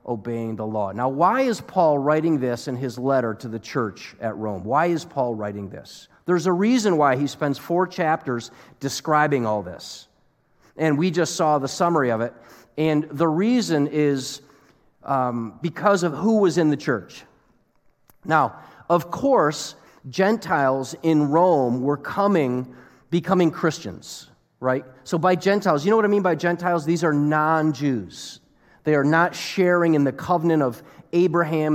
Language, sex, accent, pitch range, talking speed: English, male, American, 135-175 Hz, 165 wpm